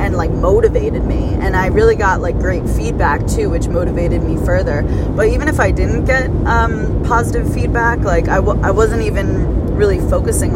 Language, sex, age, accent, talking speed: English, female, 20-39, American, 190 wpm